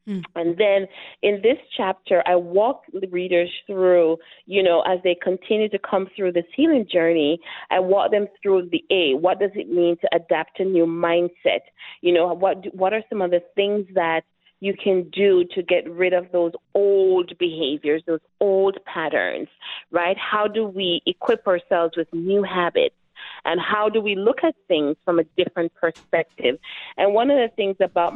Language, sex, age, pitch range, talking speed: English, female, 30-49, 175-210 Hz, 180 wpm